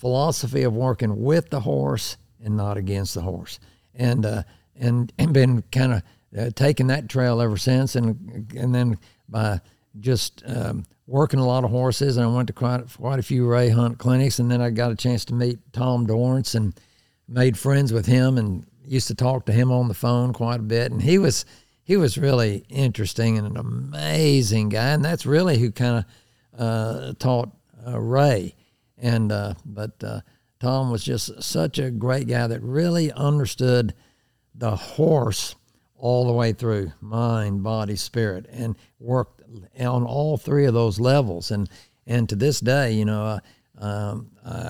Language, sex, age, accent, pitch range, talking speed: English, male, 60-79, American, 110-130 Hz, 180 wpm